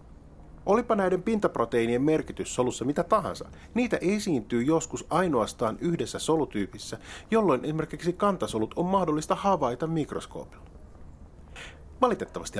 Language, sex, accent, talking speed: Finnish, male, native, 100 wpm